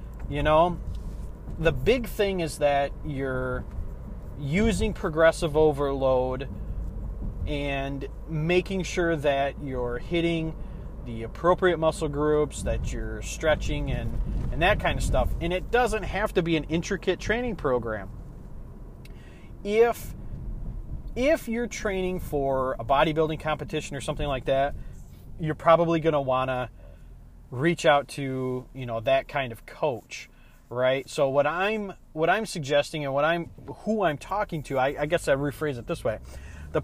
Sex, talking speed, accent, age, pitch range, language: male, 145 wpm, American, 30-49, 120-170 Hz, English